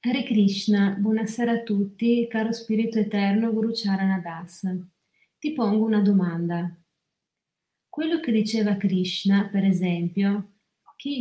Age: 30-49